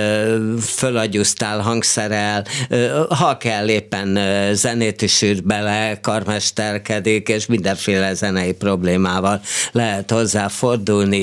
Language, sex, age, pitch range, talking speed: Hungarian, male, 50-69, 100-130 Hz, 85 wpm